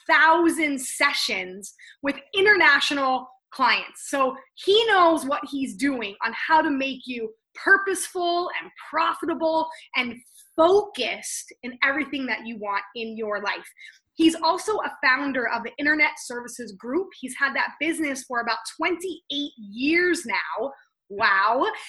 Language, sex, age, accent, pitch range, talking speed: English, female, 20-39, American, 250-335 Hz, 130 wpm